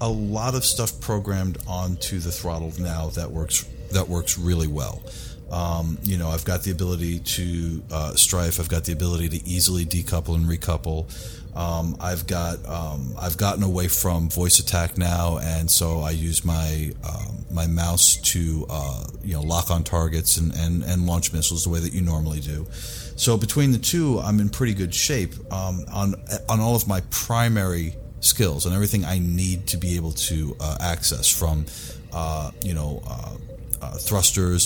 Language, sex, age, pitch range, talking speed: English, male, 40-59, 80-95 Hz, 180 wpm